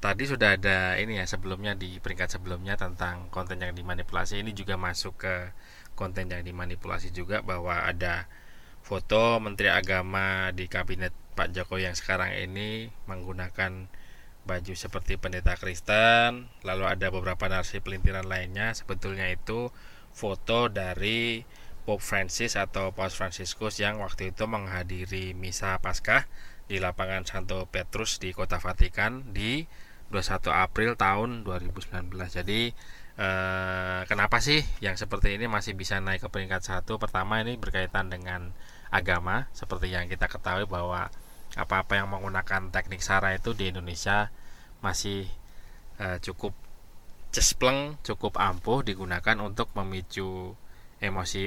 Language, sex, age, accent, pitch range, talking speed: Indonesian, male, 20-39, native, 90-105 Hz, 130 wpm